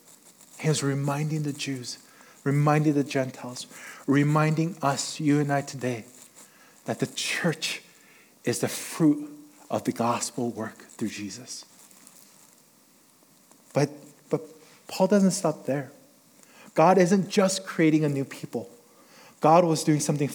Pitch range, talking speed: 140-180 Hz, 125 wpm